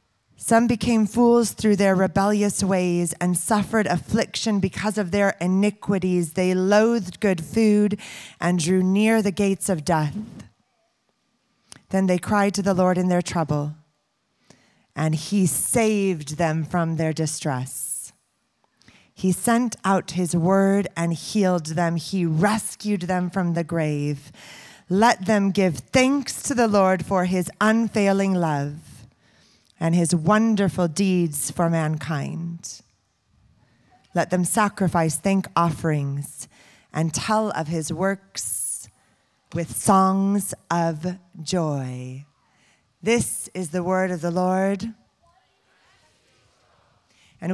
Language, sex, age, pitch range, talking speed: English, female, 30-49, 160-200 Hz, 120 wpm